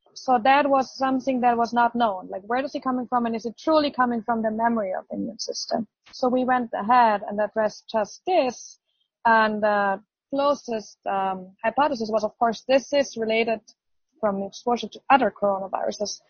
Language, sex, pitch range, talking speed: English, female, 215-255 Hz, 185 wpm